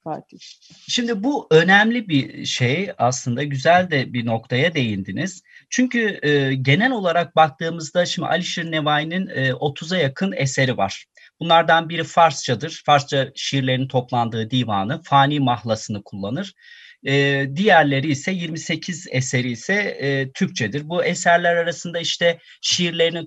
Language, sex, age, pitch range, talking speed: Turkish, male, 30-49, 125-170 Hz, 120 wpm